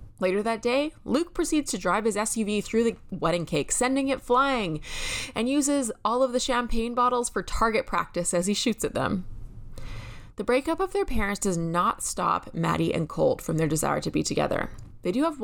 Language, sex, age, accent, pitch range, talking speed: English, female, 20-39, American, 170-245 Hz, 200 wpm